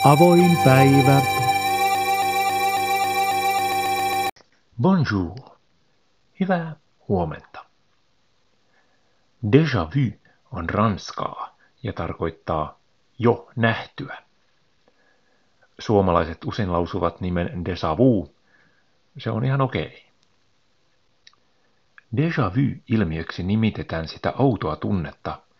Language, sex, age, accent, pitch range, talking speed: Finnish, male, 50-69, native, 85-130 Hz, 75 wpm